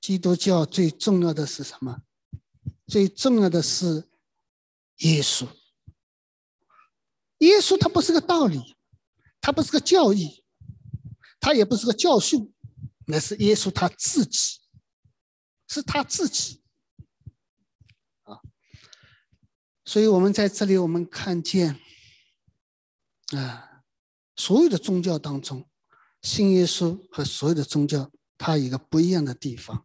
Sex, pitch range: male, 140-210 Hz